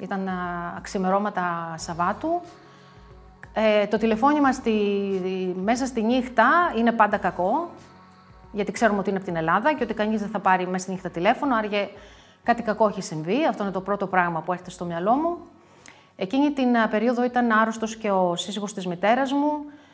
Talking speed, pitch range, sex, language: 170 wpm, 200-270 Hz, female, Greek